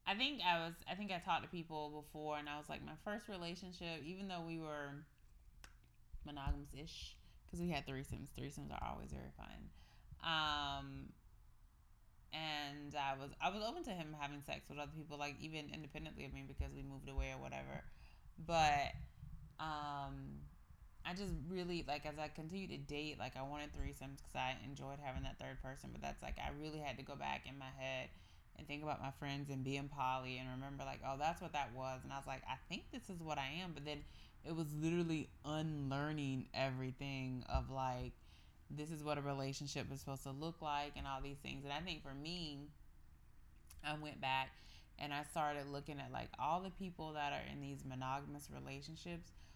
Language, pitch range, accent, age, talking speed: English, 130-155 Hz, American, 20-39, 200 wpm